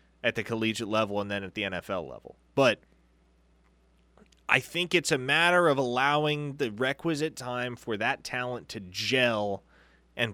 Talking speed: 155 wpm